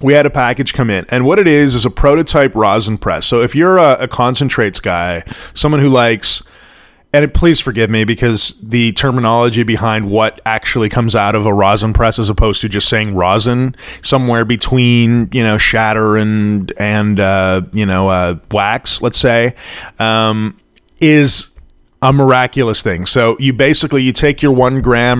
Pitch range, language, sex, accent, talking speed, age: 105-130 Hz, English, male, American, 180 wpm, 20-39